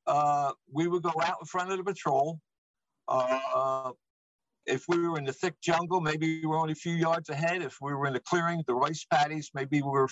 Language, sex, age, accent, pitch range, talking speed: English, male, 60-79, American, 150-175 Hz, 230 wpm